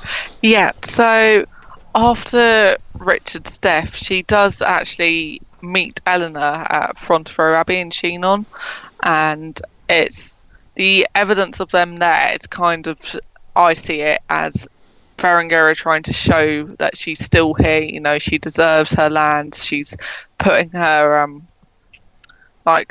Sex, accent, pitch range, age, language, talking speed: female, British, 155-180 Hz, 20-39, English, 130 wpm